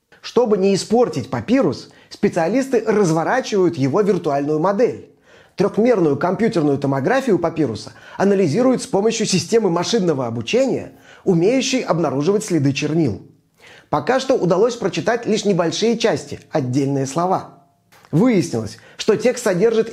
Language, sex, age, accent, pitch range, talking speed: Russian, male, 30-49, native, 155-225 Hz, 110 wpm